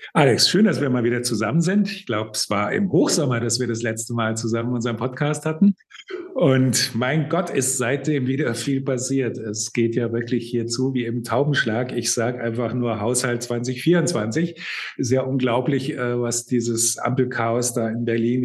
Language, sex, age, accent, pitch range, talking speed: German, male, 50-69, German, 110-135 Hz, 170 wpm